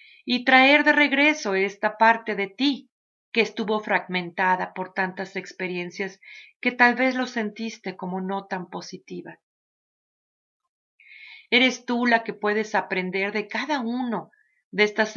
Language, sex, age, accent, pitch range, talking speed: English, female, 40-59, Mexican, 195-250 Hz, 135 wpm